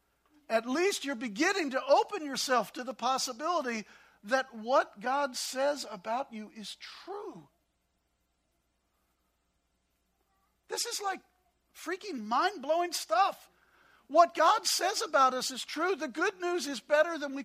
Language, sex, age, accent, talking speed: English, male, 50-69, American, 130 wpm